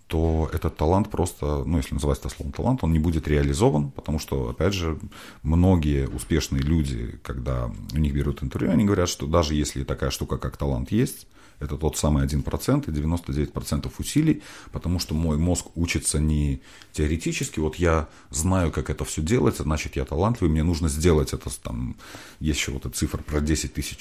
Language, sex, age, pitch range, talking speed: Russian, male, 40-59, 75-90 Hz, 180 wpm